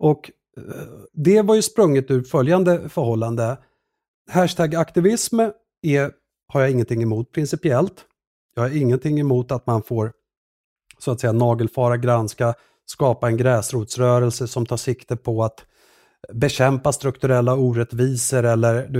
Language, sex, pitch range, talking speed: English, male, 115-150 Hz, 130 wpm